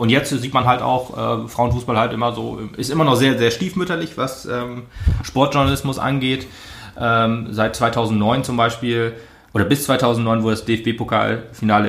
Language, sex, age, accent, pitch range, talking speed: German, male, 30-49, German, 100-120 Hz, 160 wpm